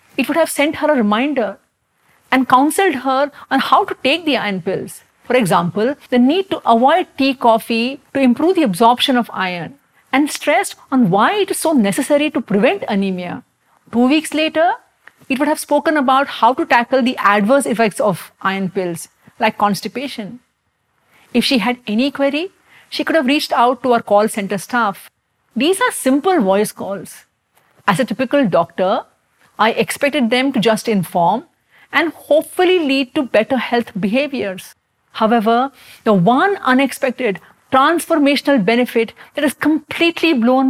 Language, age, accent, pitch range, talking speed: English, 50-69, Indian, 225-295 Hz, 160 wpm